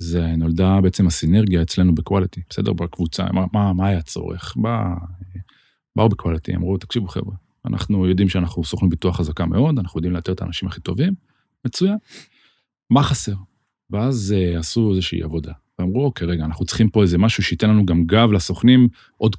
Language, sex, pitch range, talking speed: Hebrew, male, 90-120 Hz, 170 wpm